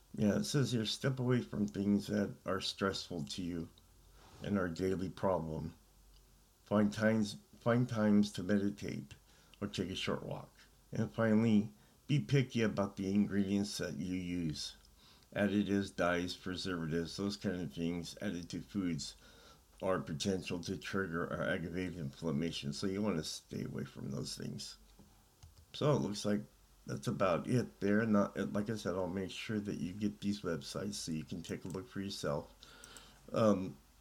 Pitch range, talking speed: 85-105 Hz, 165 wpm